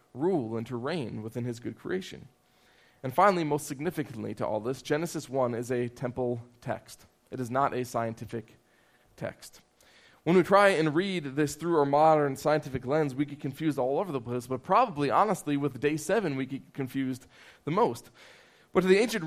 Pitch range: 125-165 Hz